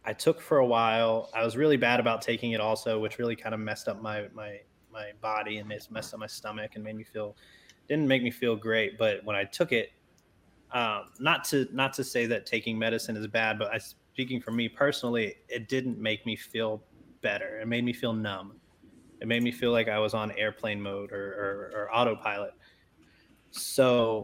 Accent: American